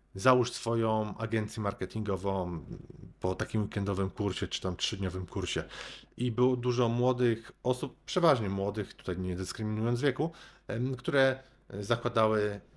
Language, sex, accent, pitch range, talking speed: Polish, male, native, 105-125 Hz, 115 wpm